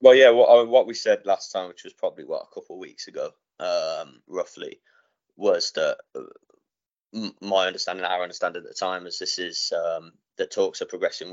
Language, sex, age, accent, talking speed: English, male, 20-39, British, 185 wpm